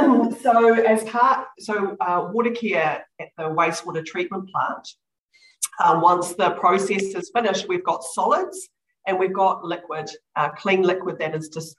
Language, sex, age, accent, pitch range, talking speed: English, female, 40-59, Australian, 155-200 Hz, 160 wpm